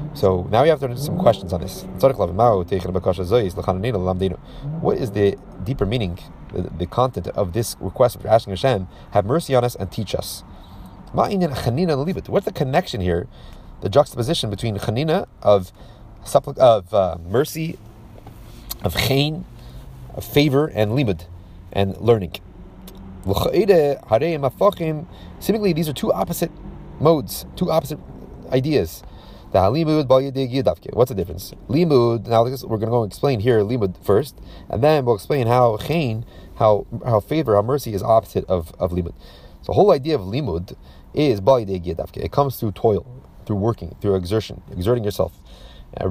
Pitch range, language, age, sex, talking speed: 95-135 Hz, English, 30-49, male, 140 wpm